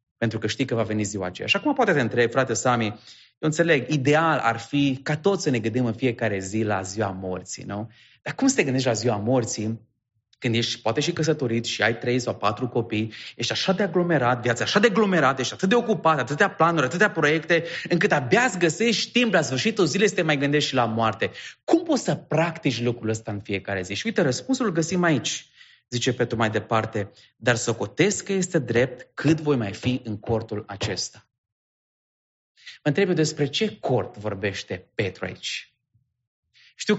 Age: 30-49